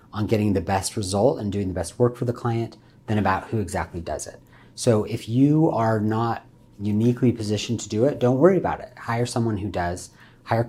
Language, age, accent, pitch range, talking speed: English, 40-59, American, 95-120 Hz, 215 wpm